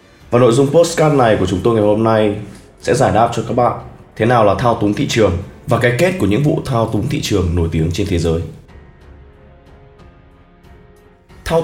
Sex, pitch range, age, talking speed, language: male, 90-125 Hz, 20-39, 205 wpm, Vietnamese